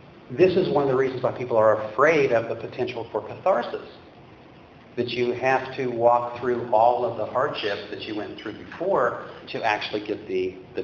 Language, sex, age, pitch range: English, male, 50-69, 115-155 Hz